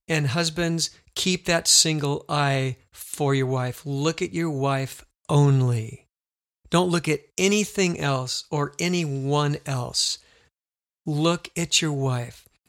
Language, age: English, 50-69